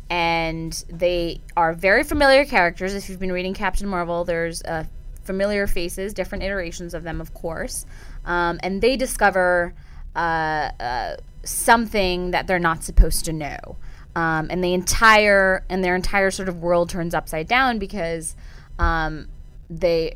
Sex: female